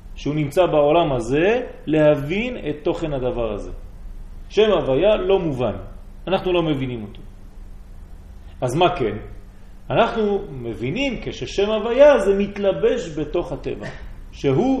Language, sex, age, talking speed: French, male, 40-59, 90 wpm